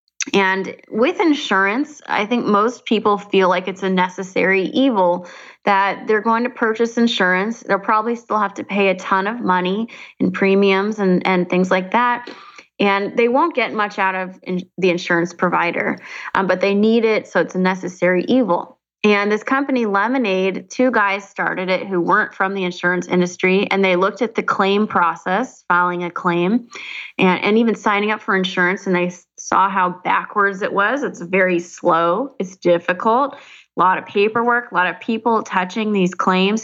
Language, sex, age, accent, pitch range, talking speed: English, female, 20-39, American, 180-215 Hz, 180 wpm